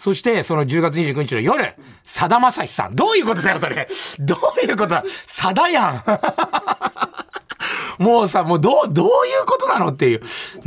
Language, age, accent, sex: Japanese, 40-59, native, male